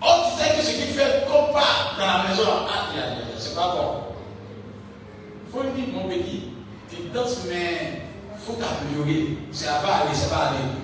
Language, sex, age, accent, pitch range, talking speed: French, male, 50-69, French, 220-300 Hz, 195 wpm